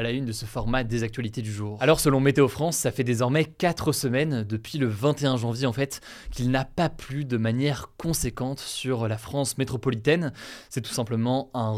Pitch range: 120-150 Hz